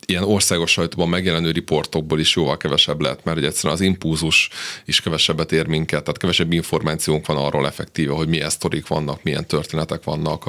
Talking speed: 170 wpm